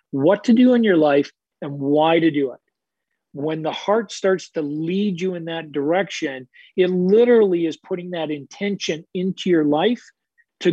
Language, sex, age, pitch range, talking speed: English, male, 40-59, 155-200 Hz, 175 wpm